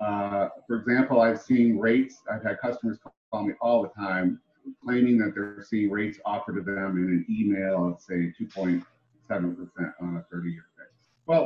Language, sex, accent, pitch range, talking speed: English, male, American, 95-125 Hz, 180 wpm